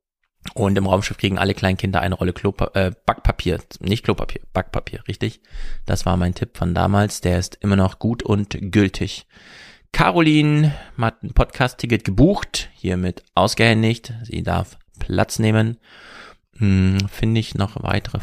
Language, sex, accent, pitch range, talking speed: German, male, German, 95-115 Hz, 145 wpm